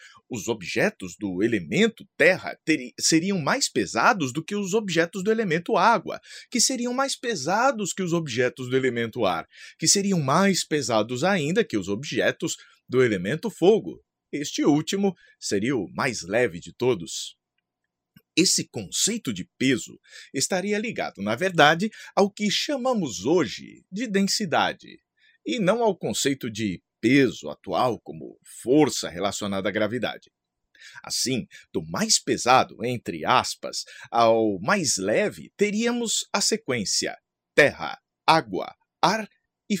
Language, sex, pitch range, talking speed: Portuguese, male, 135-220 Hz, 130 wpm